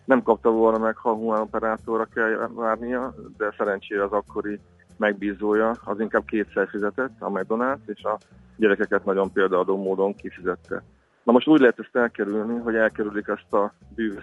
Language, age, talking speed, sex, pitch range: Hungarian, 30-49, 160 wpm, male, 100-115 Hz